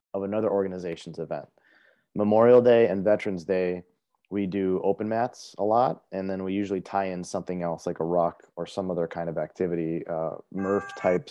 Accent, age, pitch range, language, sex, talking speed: American, 30-49, 90-110 Hz, English, male, 185 wpm